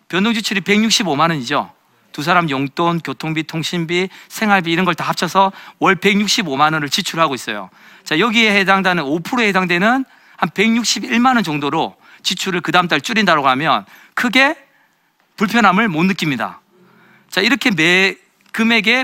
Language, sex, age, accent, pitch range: Korean, male, 40-59, native, 165-225 Hz